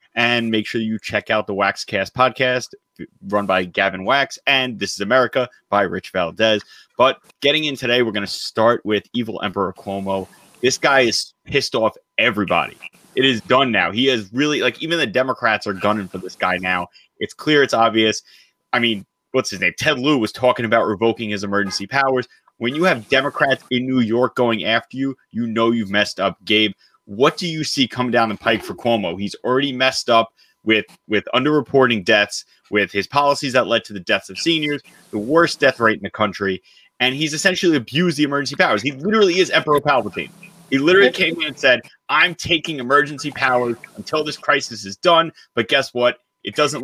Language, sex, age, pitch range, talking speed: English, male, 30-49, 105-140 Hz, 200 wpm